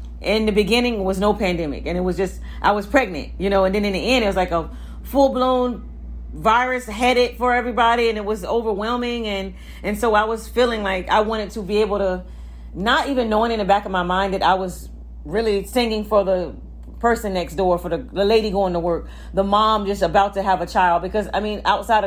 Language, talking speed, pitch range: German, 235 wpm, 185-230 Hz